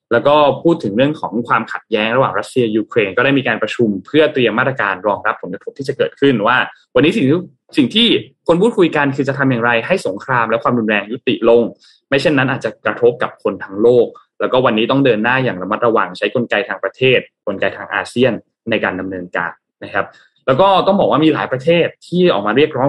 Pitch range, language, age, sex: 110-150 Hz, Thai, 20-39, male